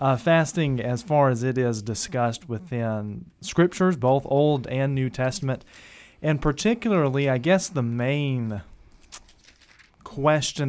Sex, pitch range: male, 115-145 Hz